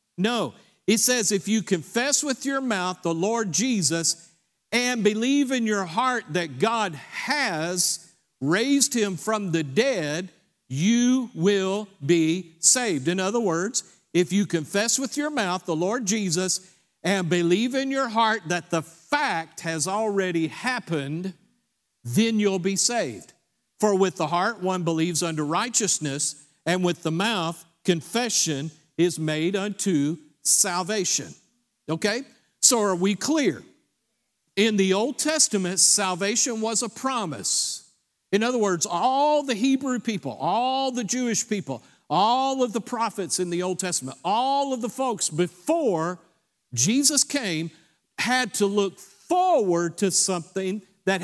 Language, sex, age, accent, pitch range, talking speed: English, male, 50-69, American, 170-235 Hz, 140 wpm